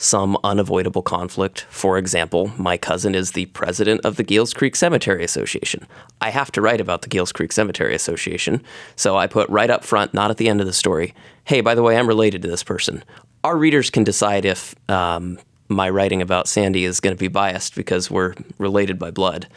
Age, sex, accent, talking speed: 30-49, male, American, 210 wpm